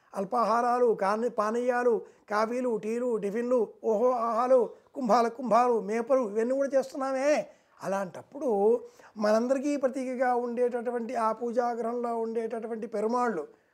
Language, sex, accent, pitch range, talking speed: Telugu, male, native, 220-255 Hz, 95 wpm